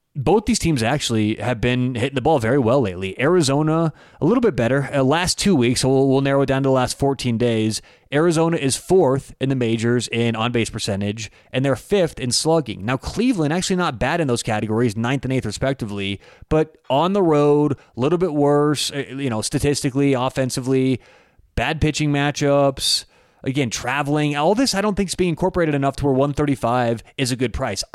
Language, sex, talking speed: English, male, 195 wpm